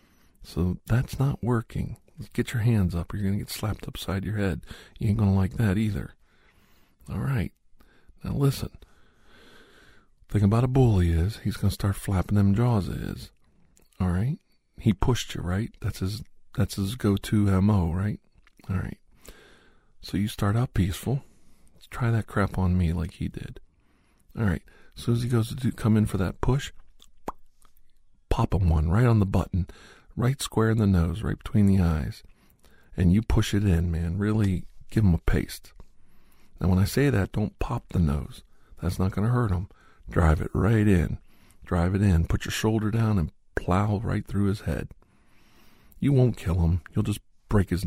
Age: 50-69